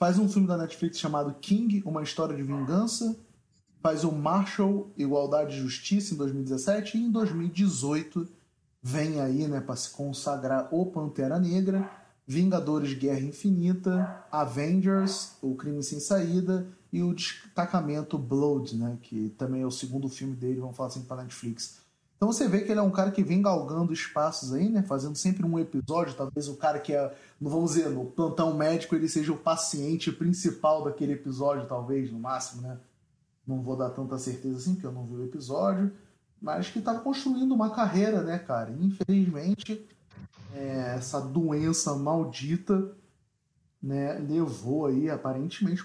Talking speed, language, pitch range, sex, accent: 160 wpm, Portuguese, 140-190 Hz, male, Brazilian